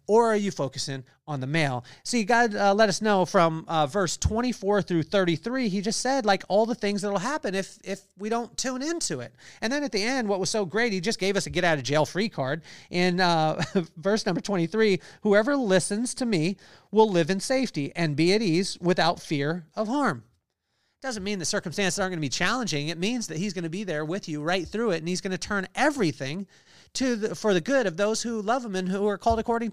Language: English